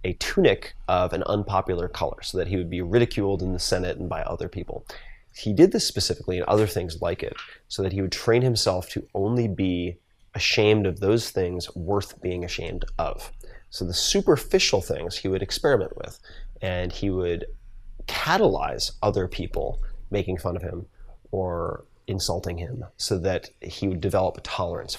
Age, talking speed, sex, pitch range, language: 30-49, 175 wpm, male, 90-105 Hz, English